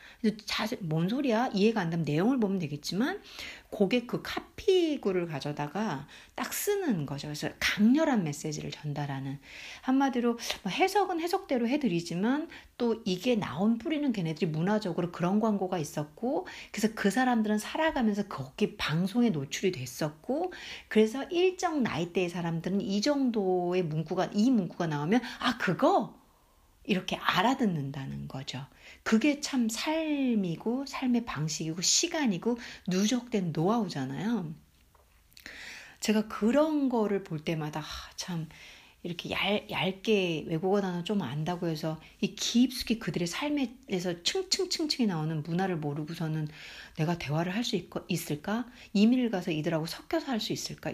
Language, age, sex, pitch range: Korean, 60-79, female, 165-245 Hz